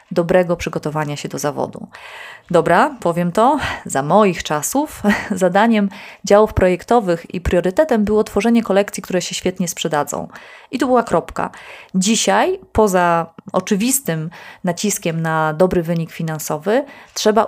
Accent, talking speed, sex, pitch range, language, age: native, 125 wpm, female, 175-215 Hz, Polish, 30-49